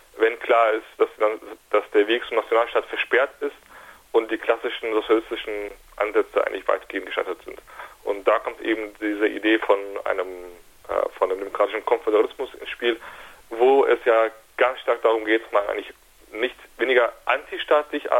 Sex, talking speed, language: male, 155 wpm, German